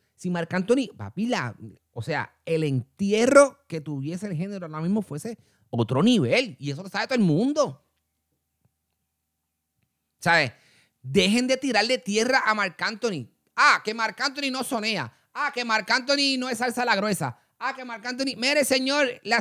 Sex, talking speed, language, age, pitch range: male, 175 wpm, Spanish, 30-49, 165-245 Hz